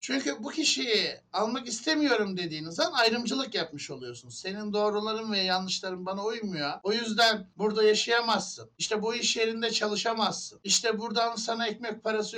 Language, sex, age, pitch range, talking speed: Turkish, male, 60-79, 190-255 Hz, 145 wpm